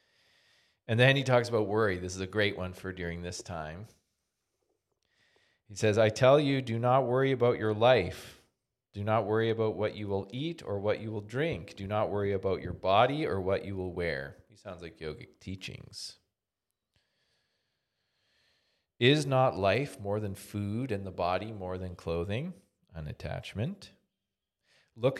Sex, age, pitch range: male, 40-59, 95-125 Hz